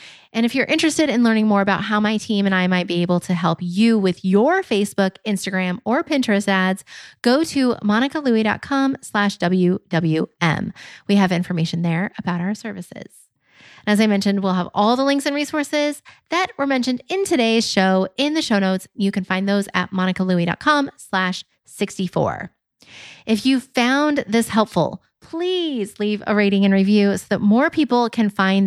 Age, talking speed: 30-49, 175 wpm